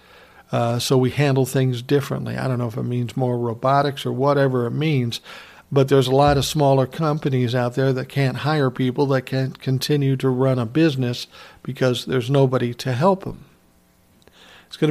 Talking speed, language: 185 wpm, English